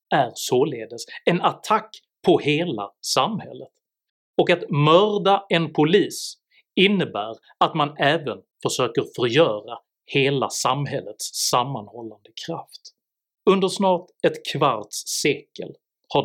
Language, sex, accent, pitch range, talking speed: Swedish, male, native, 125-180 Hz, 105 wpm